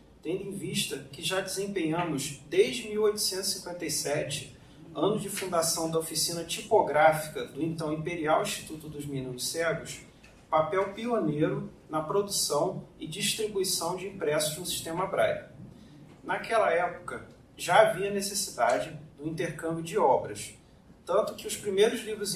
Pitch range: 155-205 Hz